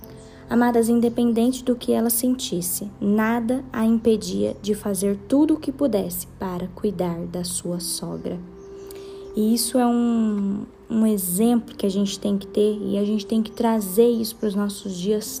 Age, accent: 20-39, Brazilian